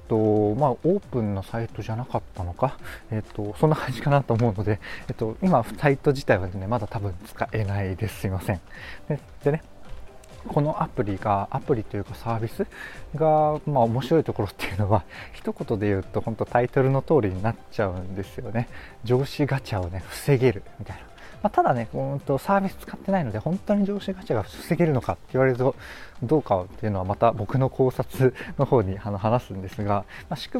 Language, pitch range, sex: Japanese, 105-145 Hz, male